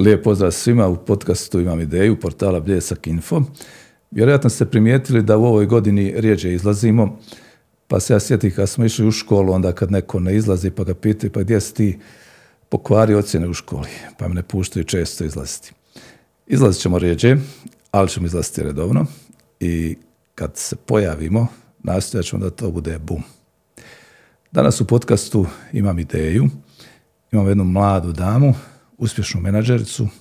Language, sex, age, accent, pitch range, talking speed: Croatian, male, 50-69, native, 90-115 Hz, 155 wpm